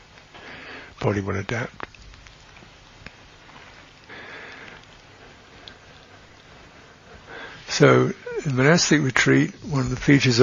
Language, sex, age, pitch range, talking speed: English, male, 60-79, 110-135 Hz, 65 wpm